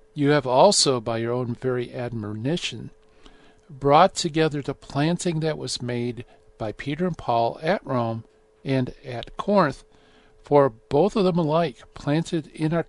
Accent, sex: American, male